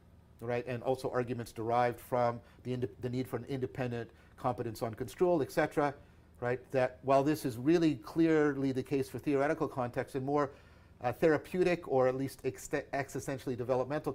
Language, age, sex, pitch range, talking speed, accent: English, 50-69, male, 105-140 Hz, 165 wpm, American